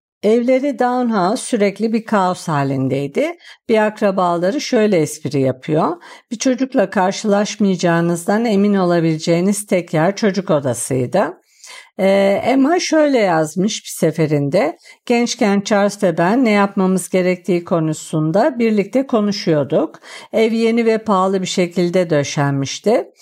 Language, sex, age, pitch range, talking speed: Turkish, female, 50-69, 175-225 Hz, 110 wpm